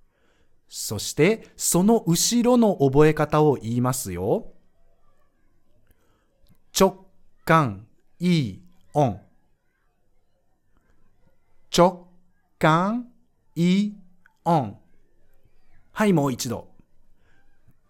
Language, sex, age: Japanese, male, 50-69